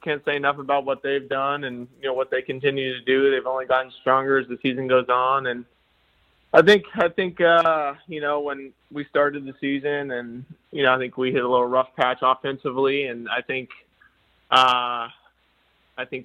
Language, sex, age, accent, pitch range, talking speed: English, male, 20-39, American, 125-140 Hz, 205 wpm